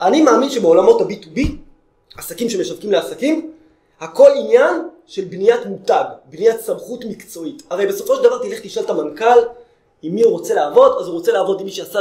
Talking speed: 175 wpm